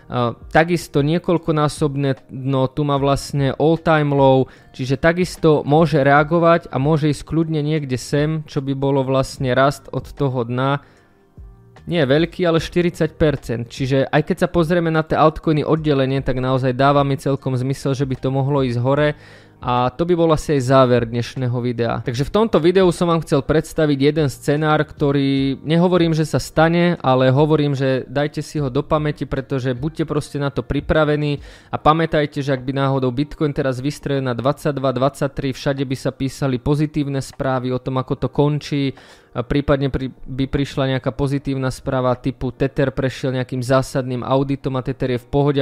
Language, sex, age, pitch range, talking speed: Slovak, male, 20-39, 130-155 Hz, 170 wpm